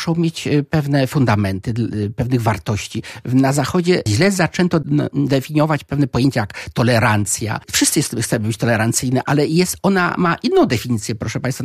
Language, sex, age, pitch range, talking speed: Polish, male, 50-69, 120-175 Hz, 150 wpm